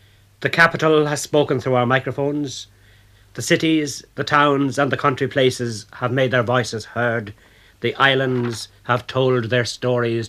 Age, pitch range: 60-79, 105-135 Hz